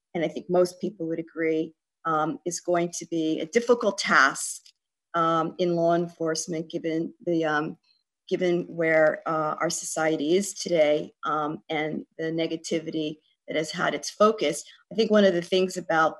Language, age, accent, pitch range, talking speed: English, 50-69, American, 165-185 Hz, 165 wpm